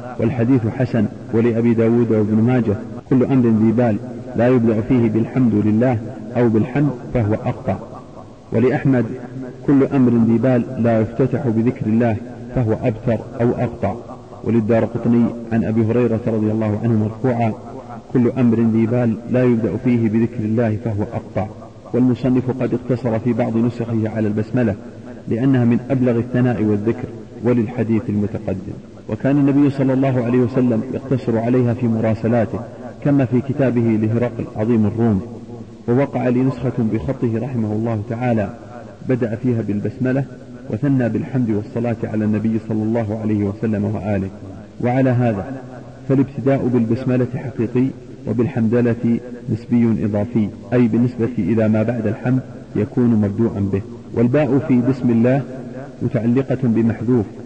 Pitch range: 110-125 Hz